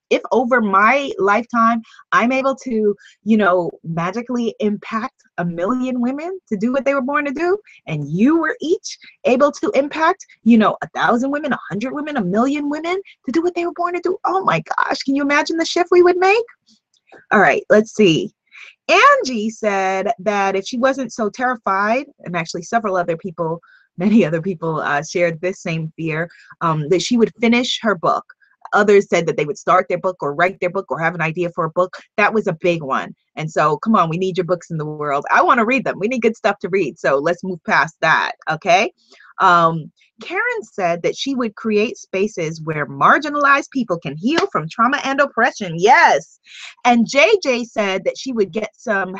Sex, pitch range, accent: female, 185-275 Hz, American